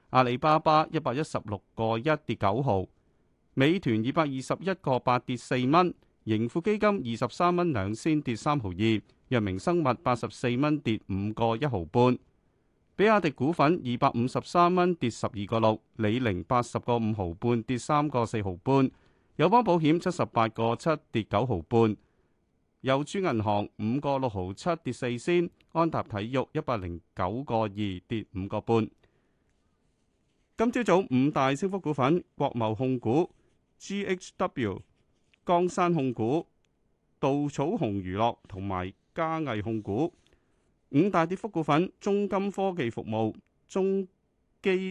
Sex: male